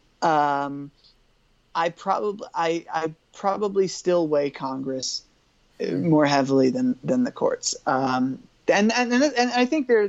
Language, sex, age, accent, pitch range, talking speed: English, male, 20-39, American, 140-180 Hz, 130 wpm